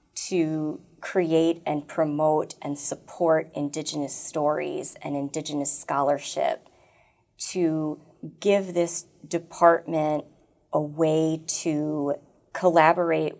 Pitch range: 150-165 Hz